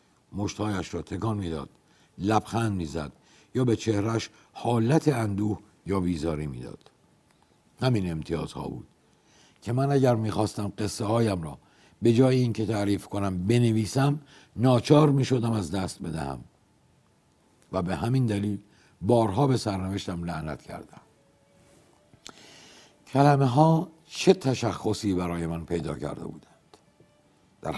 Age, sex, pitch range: 60-79, male, 95-125 Hz